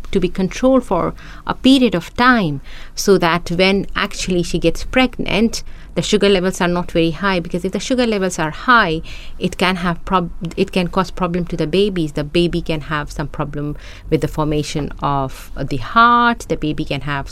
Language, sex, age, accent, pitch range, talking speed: English, female, 50-69, Indian, 150-190 Hz, 200 wpm